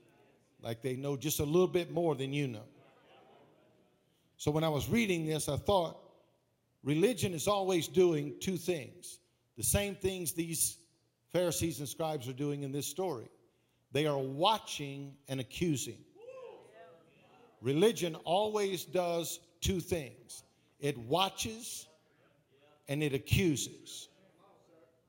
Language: English